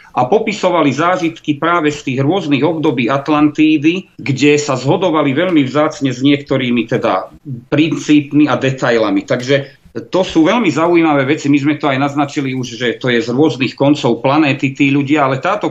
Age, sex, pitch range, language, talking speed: 40-59, male, 130-155 Hz, Czech, 165 wpm